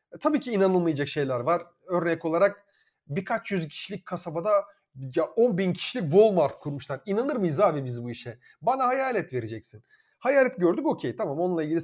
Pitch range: 150-210 Hz